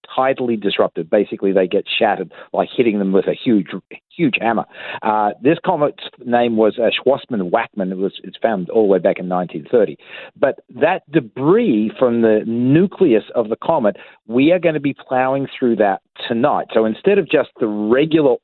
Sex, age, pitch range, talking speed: male, 50-69, 110-140 Hz, 180 wpm